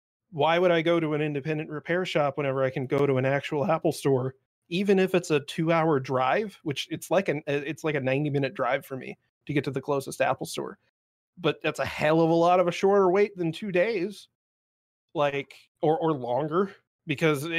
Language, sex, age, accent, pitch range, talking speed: English, male, 30-49, American, 135-165 Hz, 215 wpm